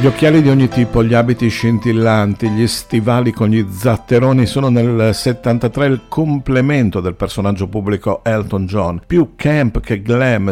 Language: Italian